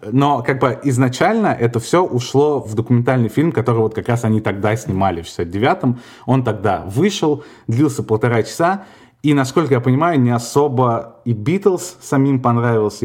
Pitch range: 105-130 Hz